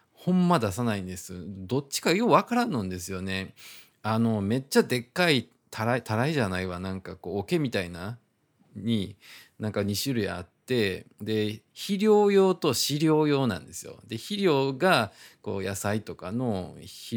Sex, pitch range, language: male, 100-130 Hz, Japanese